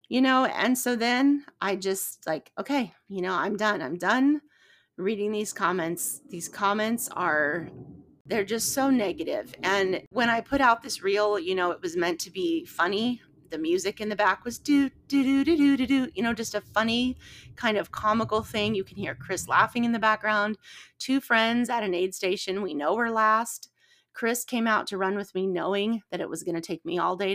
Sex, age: female, 30-49